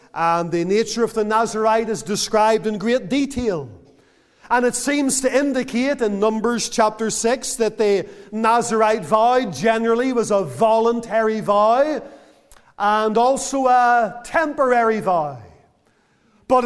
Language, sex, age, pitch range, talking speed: English, male, 40-59, 200-245 Hz, 125 wpm